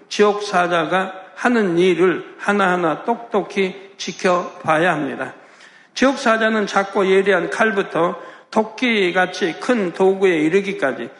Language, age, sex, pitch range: Korean, 60-79, male, 170-205 Hz